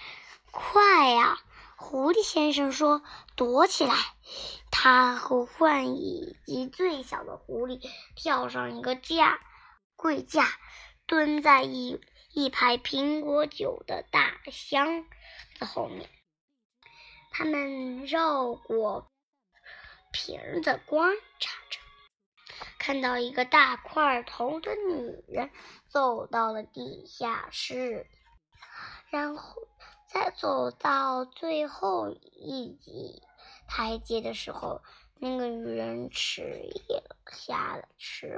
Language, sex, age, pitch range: Chinese, male, 10-29, 245-325 Hz